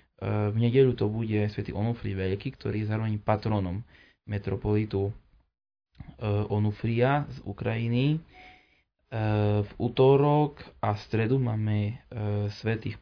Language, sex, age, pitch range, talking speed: Slovak, male, 20-39, 105-125 Hz, 100 wpm